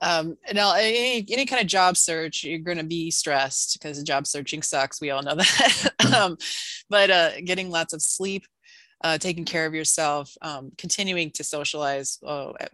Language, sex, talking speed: English, female, 180 wpm